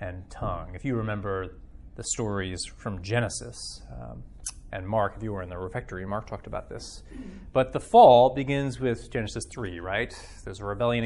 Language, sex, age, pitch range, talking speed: English, male, 30-49, 80-120 Hz, 180 wpm